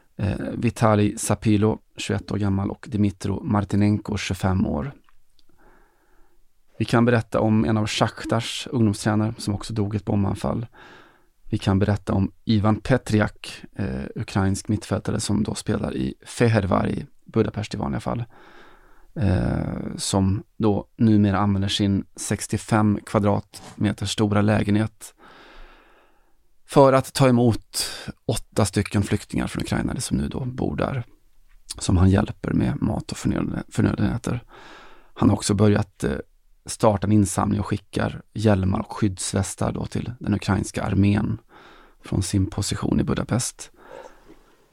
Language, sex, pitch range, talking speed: Swedish, male, 100-110 Hz, 130 wpm